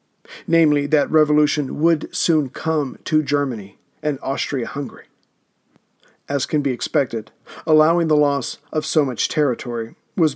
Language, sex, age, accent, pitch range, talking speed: English, male, 50-69, American, 140-160 Hz, 125 wpm